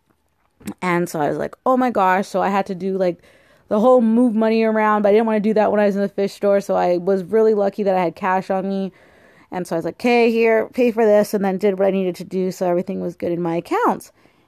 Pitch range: 175-220 Hz